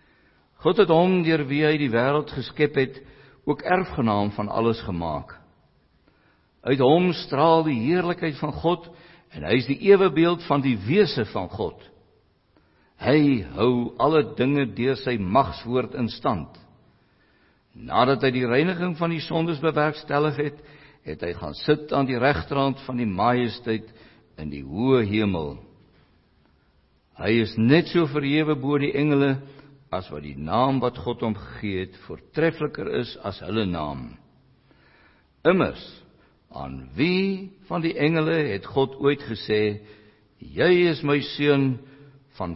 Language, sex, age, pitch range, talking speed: English, male, 60-79, 110-155 Hz, 140 wpm